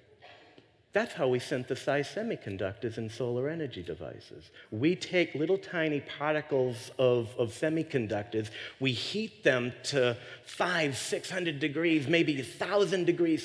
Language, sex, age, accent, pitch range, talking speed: English, male, 40-59, American, 120-165 Hz, 120 wpm